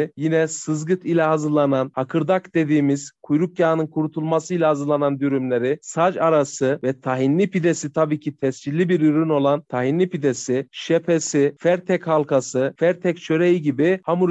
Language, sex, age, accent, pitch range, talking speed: Turkish, male, 40-59, native, 140-185 Hz, 130 wpm